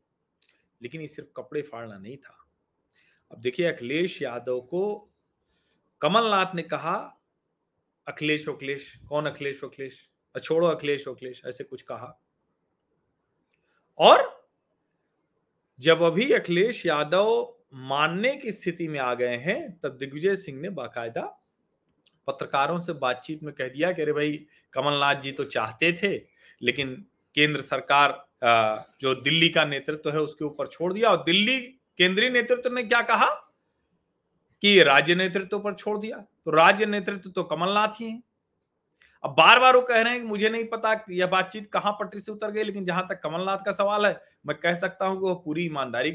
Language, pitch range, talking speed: Hindi, 140-200 Hz, 160 wpm